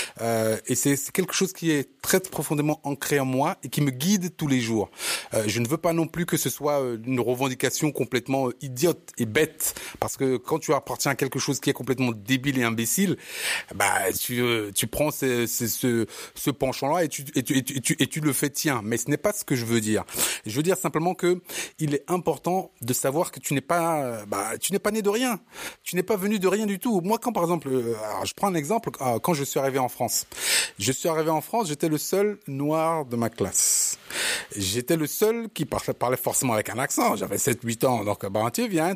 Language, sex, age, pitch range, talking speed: French, male, 30-49, 125-170 Hz, 245 wpm